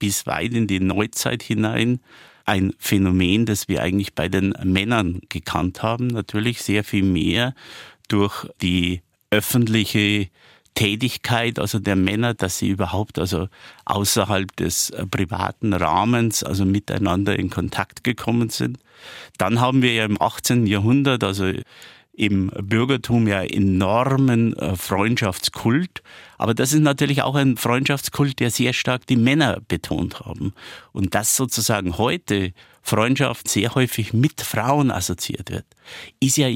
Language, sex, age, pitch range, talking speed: German, male, 50-69, 95-120 Hz, 135 wpm